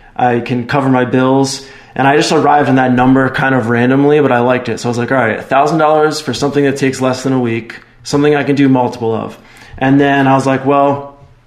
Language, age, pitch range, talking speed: English, 20-39, 125-140 Hz, 240 wpm